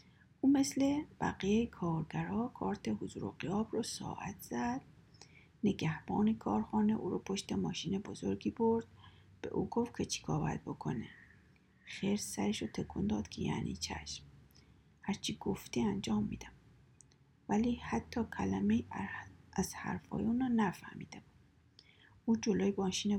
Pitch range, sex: 170-220 Hz, female